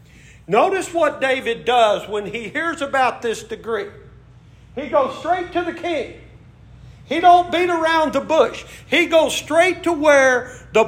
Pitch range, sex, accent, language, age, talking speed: 235-320 Hz, male, American, English, 50-69, 155 wpm